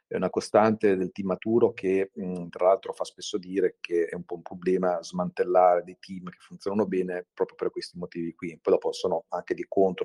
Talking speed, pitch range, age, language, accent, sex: 215 wpm, 90-115 Hz, 40-59, Italian, native, male